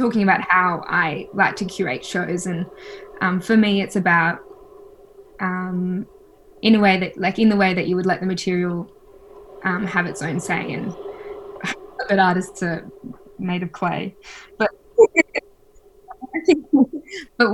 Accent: Australian